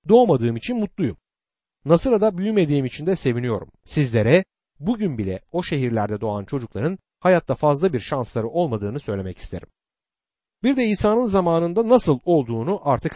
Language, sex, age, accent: Turkish, male, 60-79, native